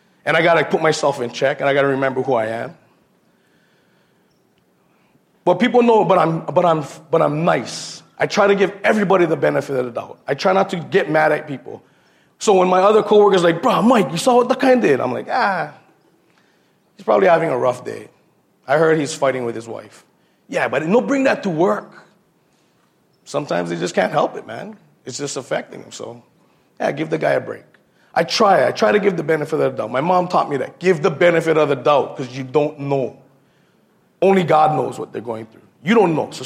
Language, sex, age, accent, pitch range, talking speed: English, male, 30-49, American, 145-195 Hz, 225 wpm